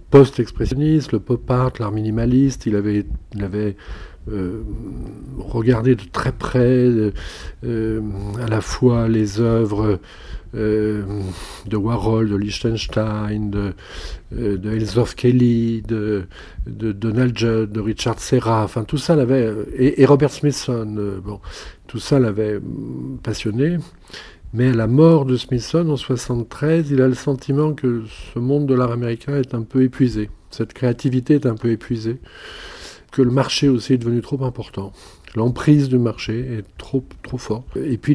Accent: French